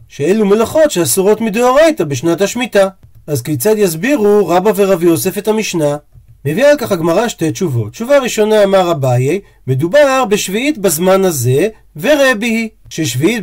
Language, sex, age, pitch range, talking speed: Hebrew, male, 40-59, 155-230 Hz, 140 wpm